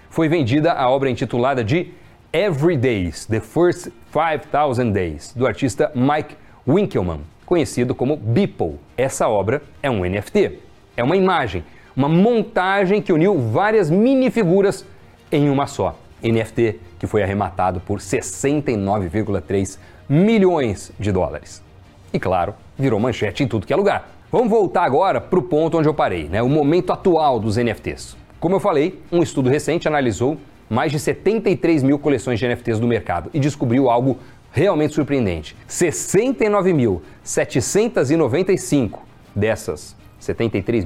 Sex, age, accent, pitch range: male, 40-59, Brazilian, 115-160 Hz